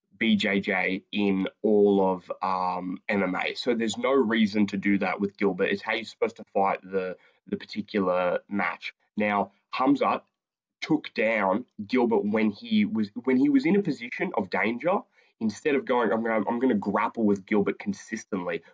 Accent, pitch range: Australian, 100-130 Hz